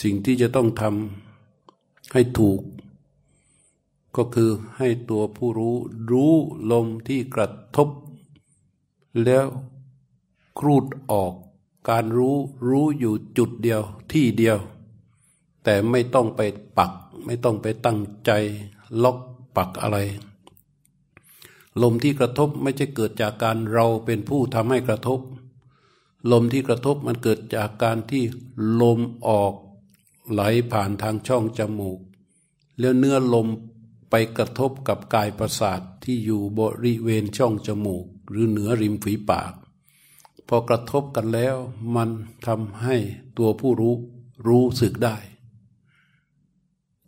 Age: 60-79